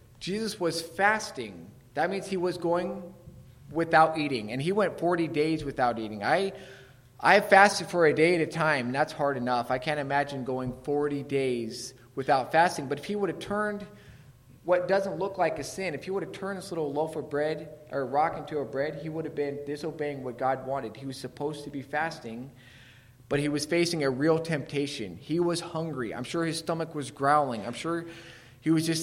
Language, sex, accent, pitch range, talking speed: English, male, American, 135-170 Hz, 205 wpm